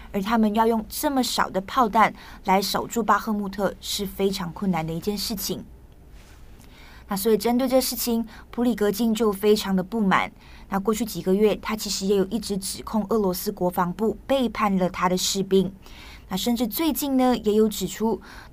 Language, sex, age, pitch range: Chinese, female, 20-39, 190-225 Hz